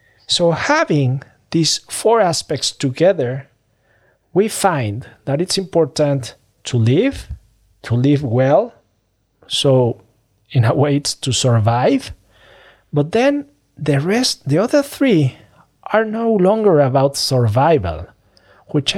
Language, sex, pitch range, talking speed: English, male, 125-150 Hz, 115 wpm